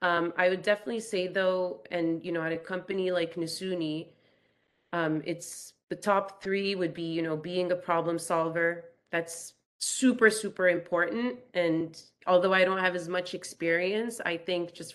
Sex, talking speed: female, 165 wpm